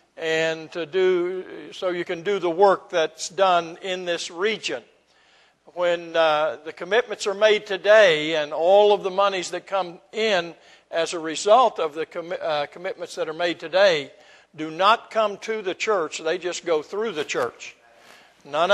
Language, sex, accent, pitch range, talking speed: English, male, American, 165-215 Hz, 175 wpm